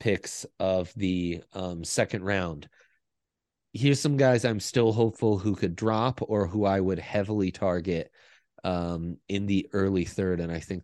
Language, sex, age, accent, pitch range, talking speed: English, male, 30-49, American, 90-100 Hz, 160 wpm